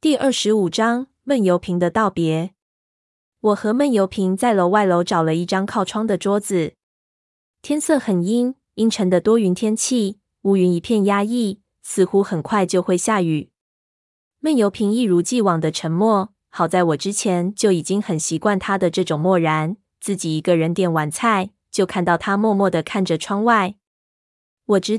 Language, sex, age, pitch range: Chinese, female, 20-39, 175-215 Hz